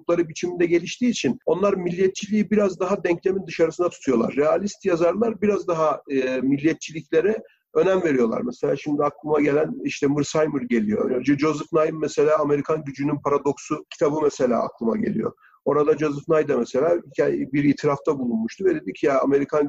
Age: 40-59